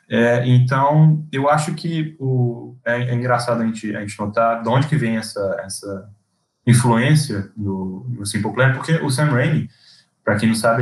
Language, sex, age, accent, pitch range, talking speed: Portuguese, male, 10-29, Brazilian, 110-140 Hz, 175 wpm